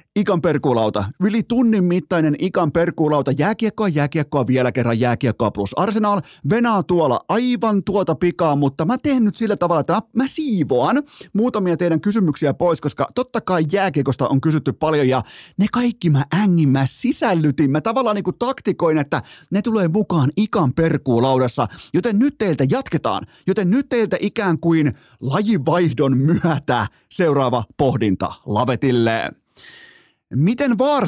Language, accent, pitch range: Finnish, native, 140-200 Hz